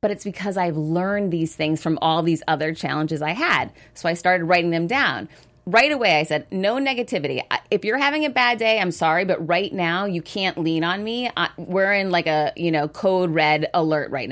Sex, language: female, English